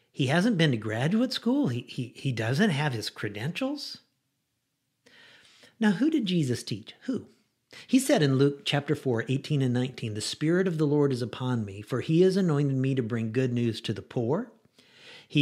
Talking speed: 190 wpm